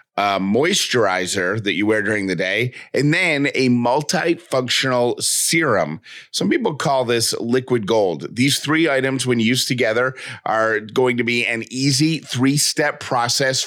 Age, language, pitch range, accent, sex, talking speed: 30-49, English, 120-140 Hz, American, male, 145 wpm